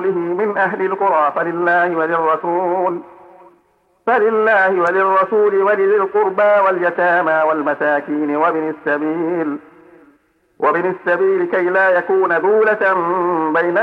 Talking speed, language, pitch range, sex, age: 85 wpm, Arabic, 160-190 Hz, male, 50-69